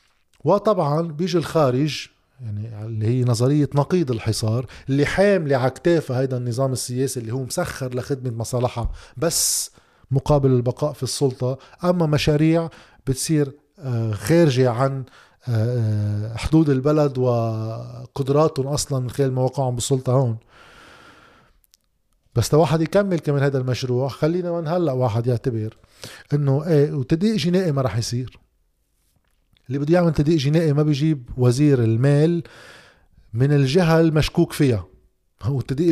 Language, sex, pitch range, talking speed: Arabic, male, 125-165 Hz, 120 wpm